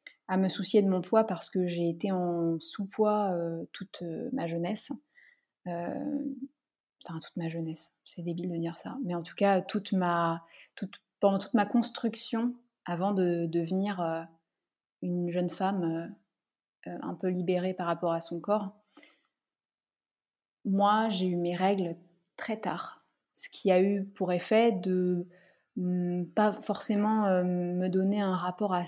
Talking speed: 155 wpm